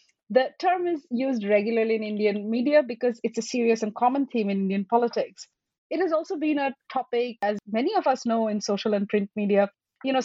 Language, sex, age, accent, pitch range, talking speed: English, female, 30-49, Indian, 190-240 Hz, 210 wpm